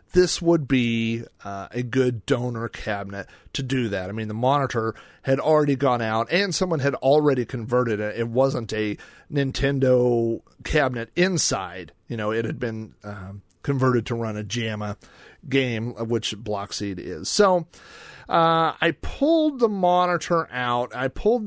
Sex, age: male, 40-59